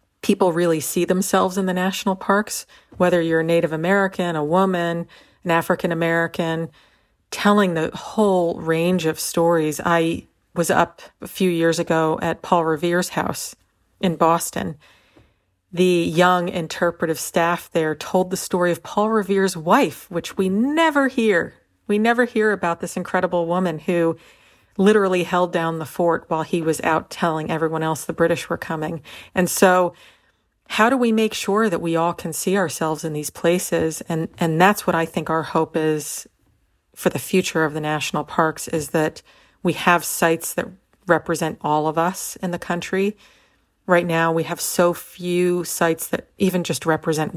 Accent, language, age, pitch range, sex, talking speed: American, English, 40-59, 165-185 Hz, female, 170 wpm